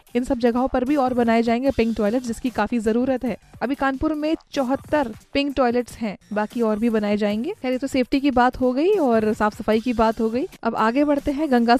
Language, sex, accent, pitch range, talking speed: Hindi, female, native, 230-275 Hz, 230 wpm